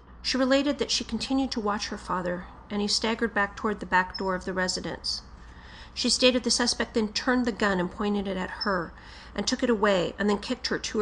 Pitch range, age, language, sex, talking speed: 180-225 Hz, 40-59, English, female, 230 wpm